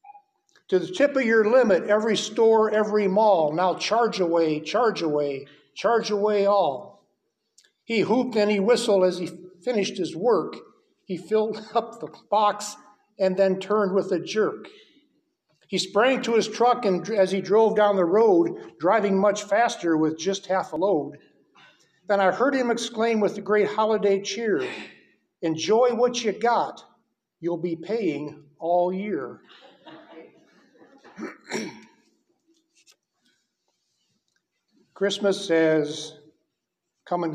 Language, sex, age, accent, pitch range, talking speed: English, male, 60-79, American, 165-215 Hz, 135 wpm